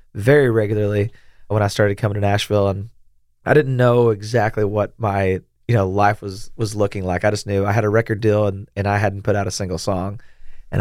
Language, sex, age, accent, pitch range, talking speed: English, male, 20-39, American, 100-110 Hz, 220 wpm